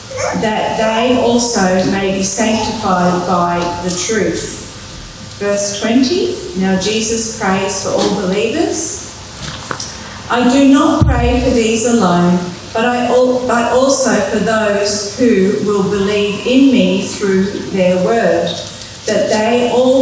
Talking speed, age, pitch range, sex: 125 wpm, 40-59, 190-240 Hz, female